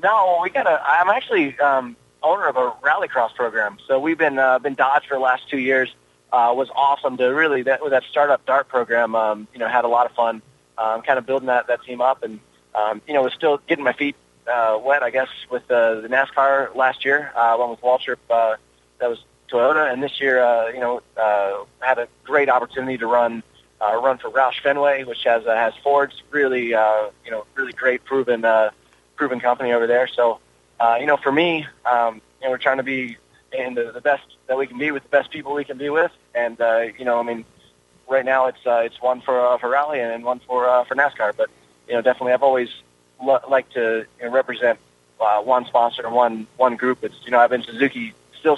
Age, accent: 20-39, American